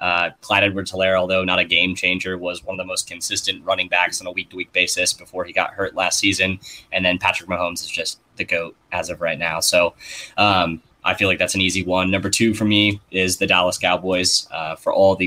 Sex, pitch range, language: male, 90-95 Hz, English